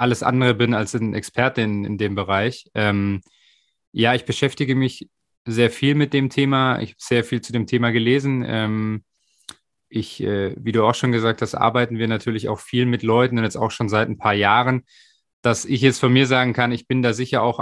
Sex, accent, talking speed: male, German, 215 wpm